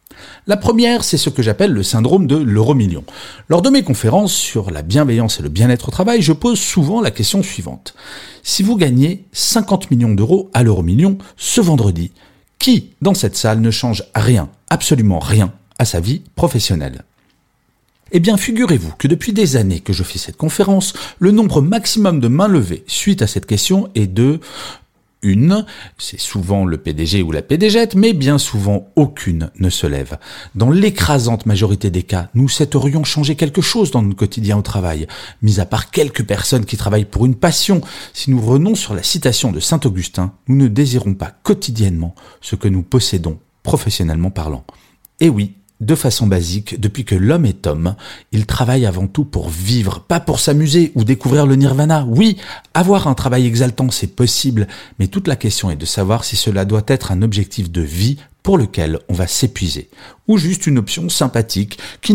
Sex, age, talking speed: male, 40-59, 185 wpm